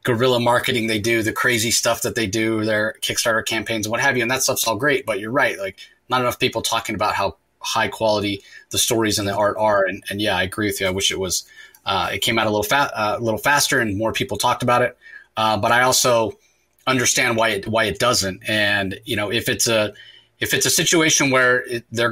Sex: male